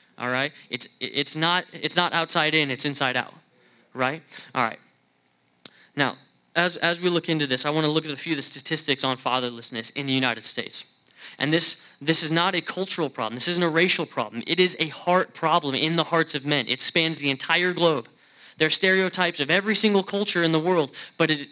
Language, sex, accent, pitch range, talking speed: English, male, American, 130-175 Hz, 210 wpm